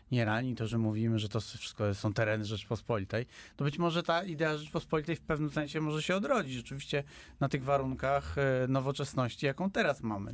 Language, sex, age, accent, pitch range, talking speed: Polish, male, 30-49, native, 120-165 Hz, 180 wpm